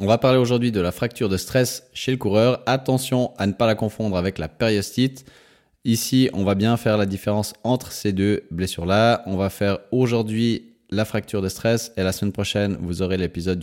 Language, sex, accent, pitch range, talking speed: French, male, French, 90-115 Hz, 205 wpm